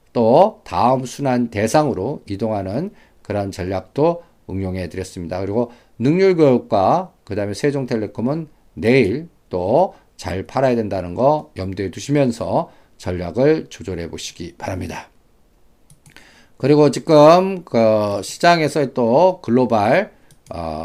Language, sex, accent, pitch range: Korean, male, native, 105-150 Hz